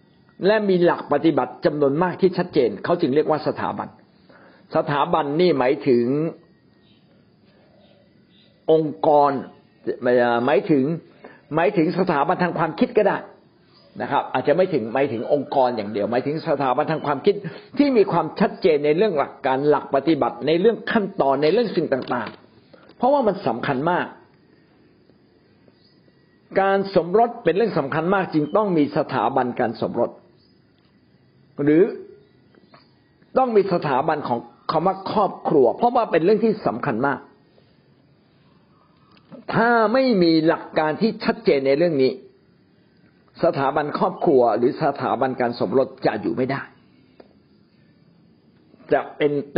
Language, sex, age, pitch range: Thai, male, 60-79, 140-195 Hz